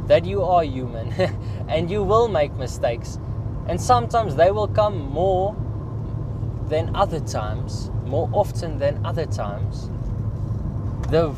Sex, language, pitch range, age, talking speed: male, English, 105-120 Hz, 20-39, 125 wpm